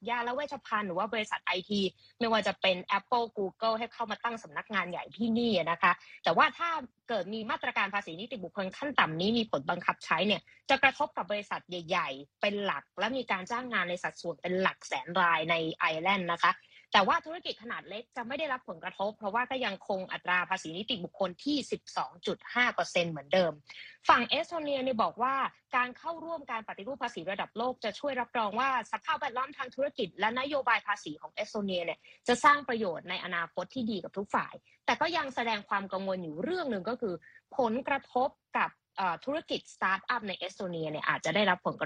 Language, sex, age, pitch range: Thai, female, 20-39, 185-260 Hz